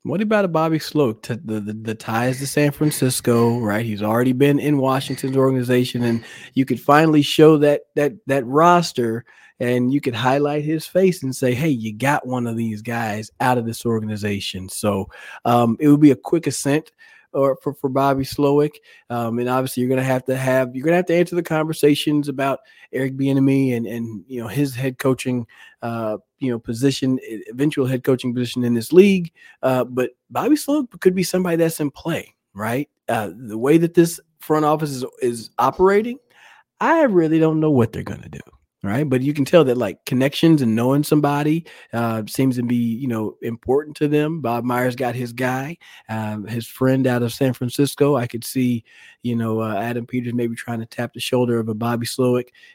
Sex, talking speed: male, 200 wpm